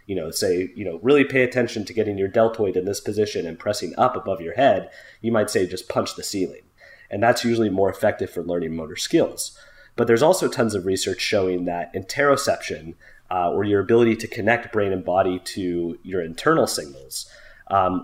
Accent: American